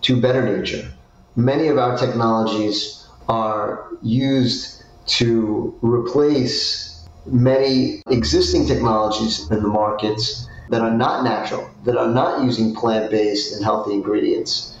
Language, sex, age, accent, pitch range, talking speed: English, male, 40-59, American, 110-125 Hz, 120 wpm